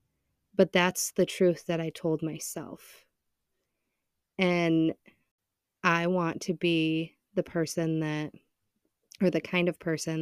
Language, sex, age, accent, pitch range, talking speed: English, female, 30-49, American, 160-180 Hz, 125 wpm